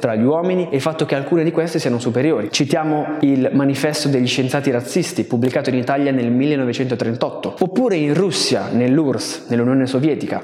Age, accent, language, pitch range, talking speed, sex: 20-39, native, Italian, 130-165 Hz, 165 wpm, male